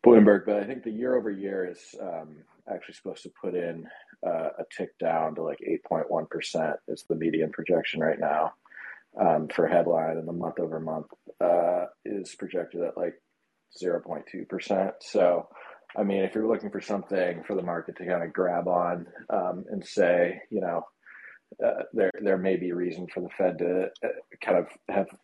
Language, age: English, 30-49